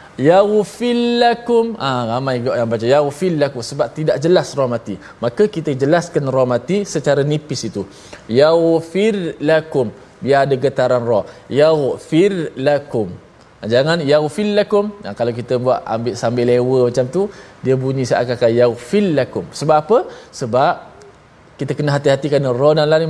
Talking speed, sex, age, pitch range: 135 wpm, male, 20-39, 120-160 Hz